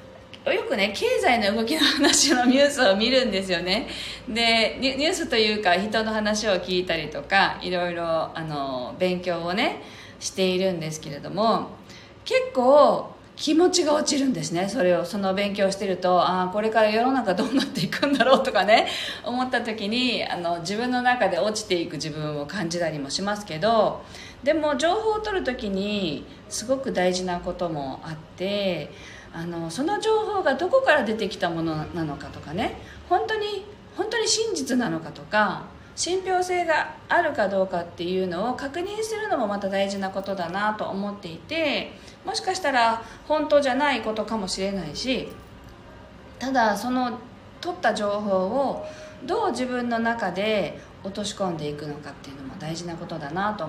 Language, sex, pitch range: Japanese, female, 180-285 Hz